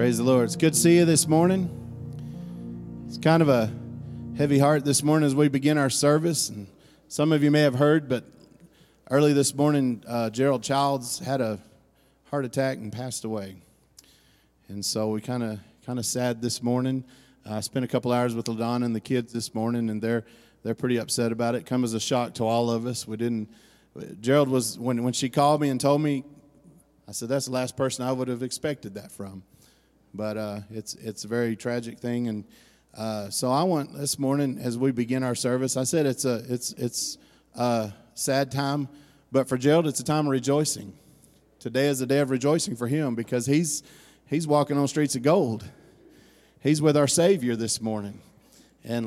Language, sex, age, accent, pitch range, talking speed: English, male, 30-49, American, 120-140 Hz, 205 wpm